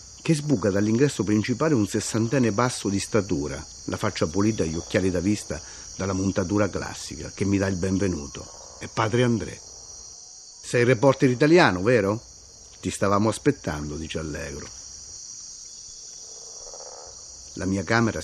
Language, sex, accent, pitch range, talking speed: Italian, male, native, 90-110 Hz, 135 wpm